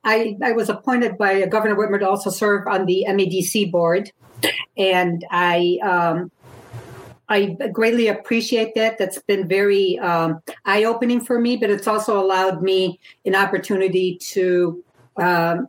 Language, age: English, 50-69